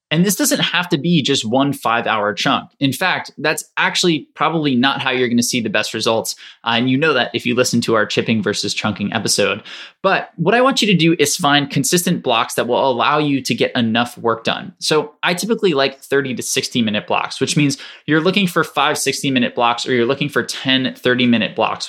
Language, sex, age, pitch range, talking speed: English, male, 20-39, 120-155 Hz, 235 wpm